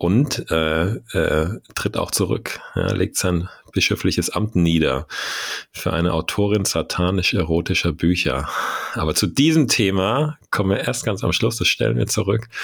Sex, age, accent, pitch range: male, 40-59, German, 85-110 Hz